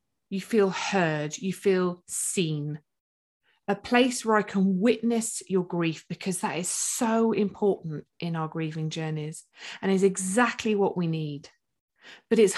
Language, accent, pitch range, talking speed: English, British, 180-245 Hz, 150 wpm